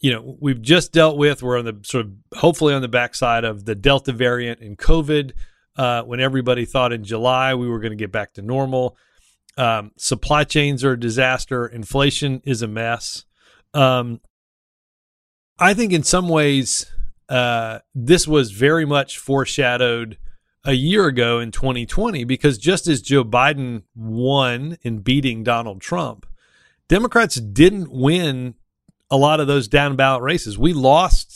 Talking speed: 160 wpm